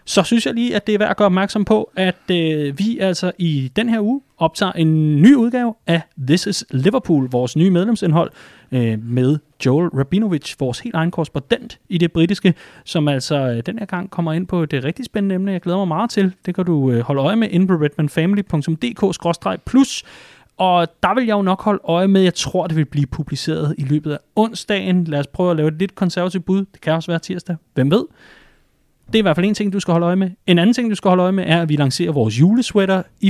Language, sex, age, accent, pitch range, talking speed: Danish, male, 30-49, native, 145-190 Hz, 235 wpm